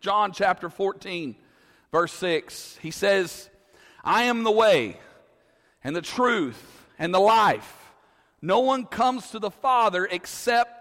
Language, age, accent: English, 40-59, American